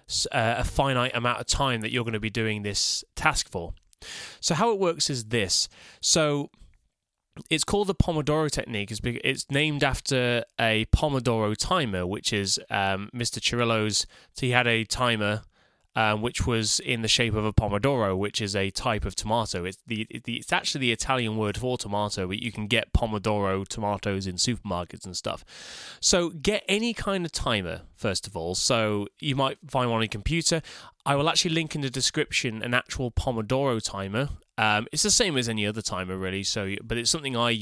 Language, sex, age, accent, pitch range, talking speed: English, male, 20-39, British, 105-140 Hz, 190 wpm